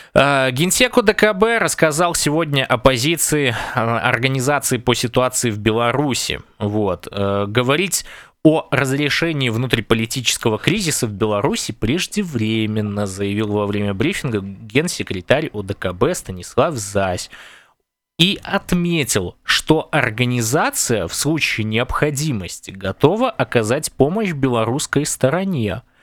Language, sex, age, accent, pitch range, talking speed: Russian, male, 20-39, native, 110-160 Hz, 95 wpm